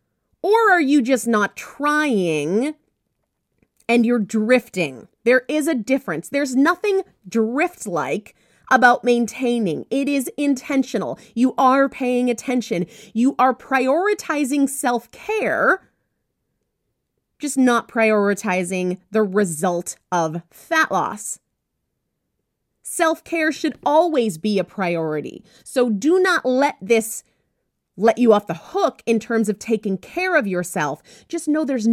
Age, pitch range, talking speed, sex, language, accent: 30-49, 220-300 Hz, 120 wpm, female, English, American